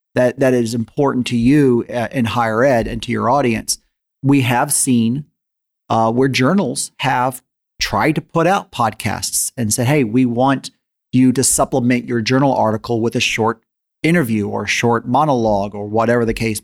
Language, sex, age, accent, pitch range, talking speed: English, male, 40-59, American, 115-145 Hz, 175 wpm